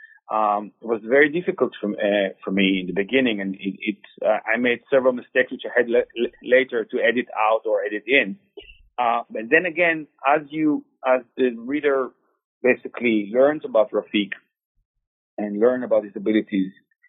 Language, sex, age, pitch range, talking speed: English, male, 30-49, 110-150 Hz, 170 wpm